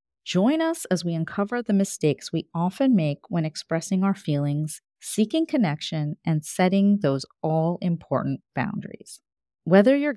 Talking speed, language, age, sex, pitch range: 135 wpm, English, 30-49, female, 160-215 Hz